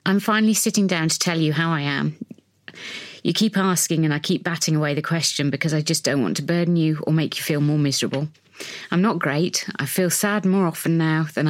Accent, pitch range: British, 150-175 Hz